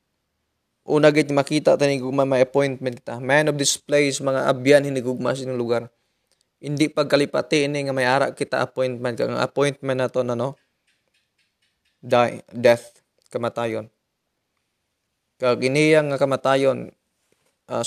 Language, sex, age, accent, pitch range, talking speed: Filipino, male, 20-39, native, 120-140 Hz, 125 wpm